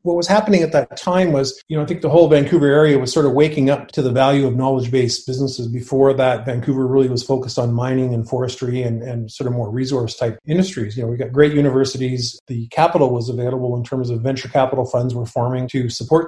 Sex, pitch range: male, 120-145 Hz